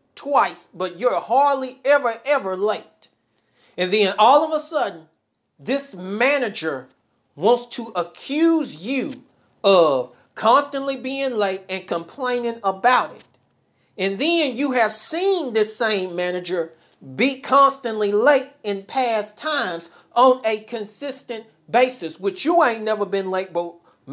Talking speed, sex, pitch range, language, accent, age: 130 wpm, male, 185-265 Hz, English, American, 40-59